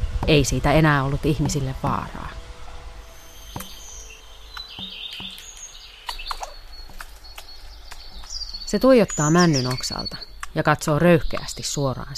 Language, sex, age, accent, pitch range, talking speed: Finnish, female, 30-49, native, 125-155 Hz, 70 wpm